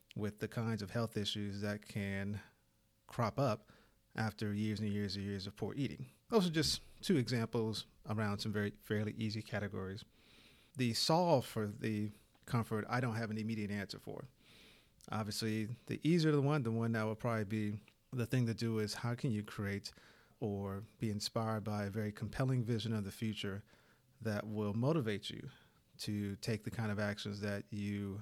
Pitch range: 105-120 Hz